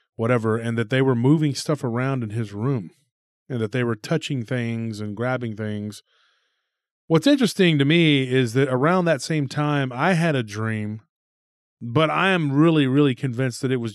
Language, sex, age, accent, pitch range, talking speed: English, male, 30-49, American, 110-135 Hz, 185 wpm